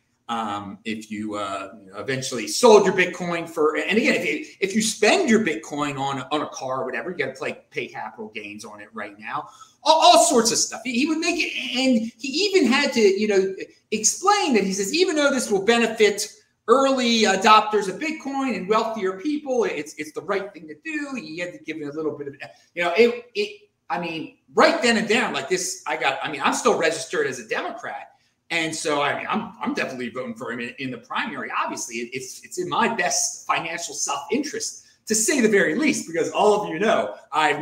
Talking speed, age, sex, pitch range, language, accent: 225 wpm, 30-49, male, 155-250 Hz, English, American